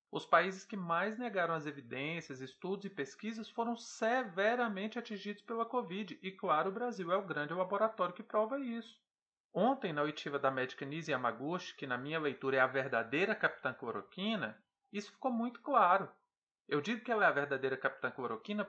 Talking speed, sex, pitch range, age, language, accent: 175 wpm, male, 155-225 Hz, 40-59, Portuguese, Brazilian